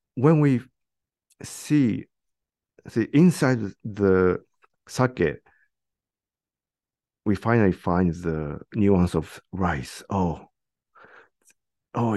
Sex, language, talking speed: male, English, 80 wpm